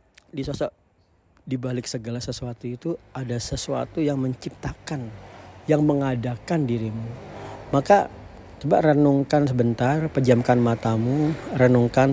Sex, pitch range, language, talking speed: male, 115-140 Hz, Indonesian, 95 wpm